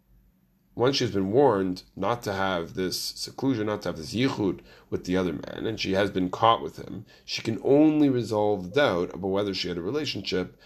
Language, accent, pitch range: English, American, 90-110 Hz